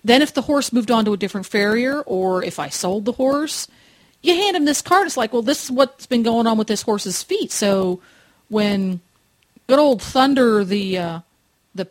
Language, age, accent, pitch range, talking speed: English, 40-59, American, 195-245 Hz, 210 wpm